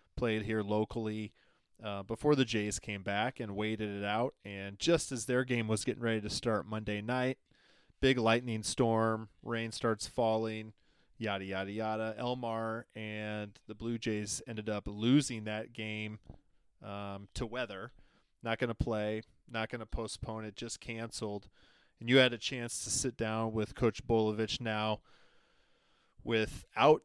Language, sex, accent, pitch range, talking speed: English, male, American, 105-120 Hz, 160 wpm